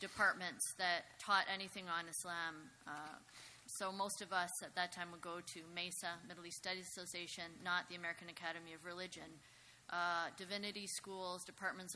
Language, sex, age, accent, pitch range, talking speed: English, female, 20-39, American, 170-190 Hz, 160 wpm